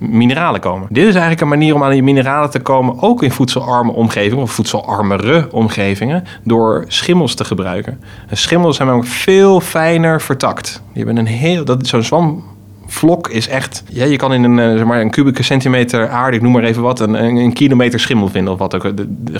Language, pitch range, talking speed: Dutch, 105-140 Hz, 190 wpm